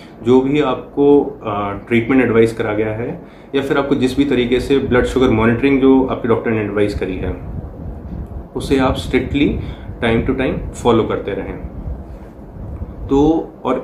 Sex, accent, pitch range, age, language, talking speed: male, native, 110-135 Hz, 30-49, Hindi, 155 wpm